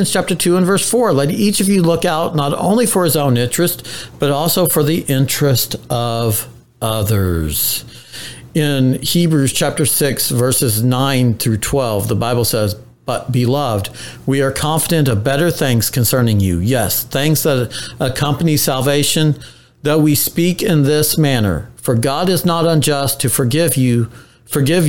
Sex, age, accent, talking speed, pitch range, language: male, 50-69, American, 155 wpm, 120-150 Hz, English